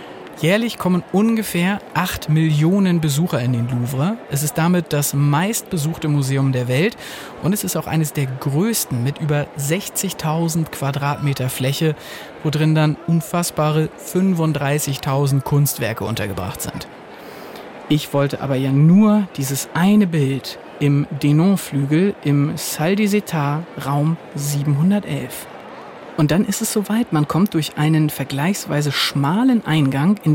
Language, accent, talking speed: German, German, 130 wpm